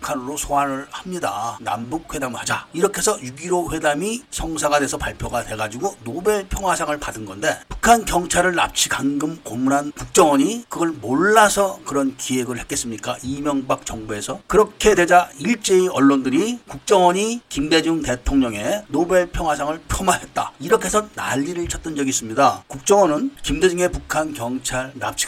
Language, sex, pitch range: Korean, male, 135-195 Hz